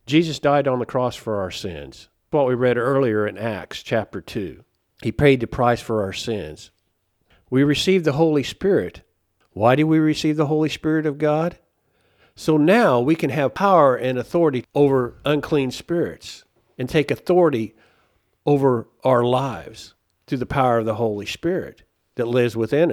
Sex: male